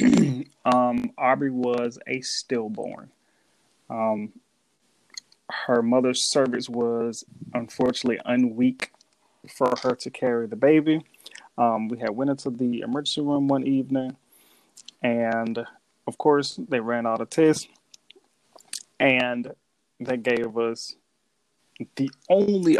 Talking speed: 110 wpm